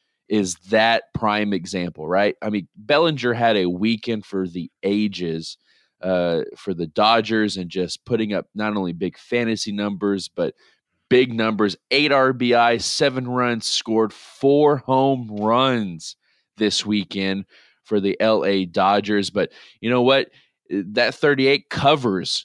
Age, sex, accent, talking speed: 20-39, male, American, 135 wpm